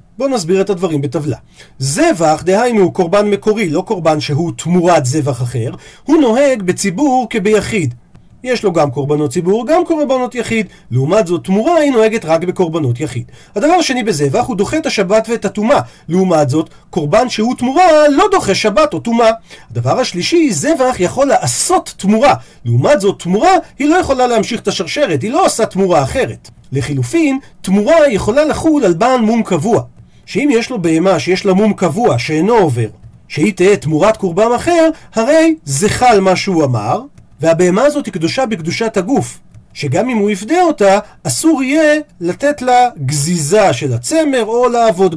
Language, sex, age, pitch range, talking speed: Hebrew, male, 40-59, 165-250 Hz, 165 wpm